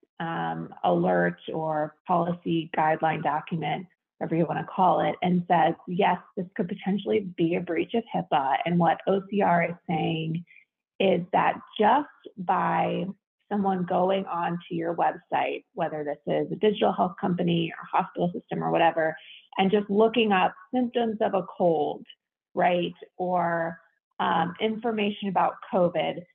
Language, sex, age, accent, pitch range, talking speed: English, female, 30-49, American, 170-200 Hz, 140 wpm